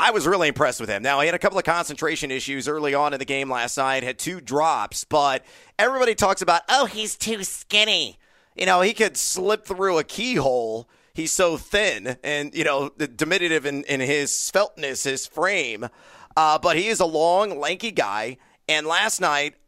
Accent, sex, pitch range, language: American, male, 140-175 Hz, English